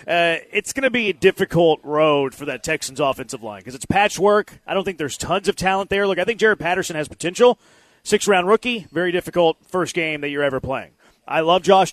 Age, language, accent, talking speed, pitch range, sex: 30-49, English, American, 220 wpm, 150-195 Hz, male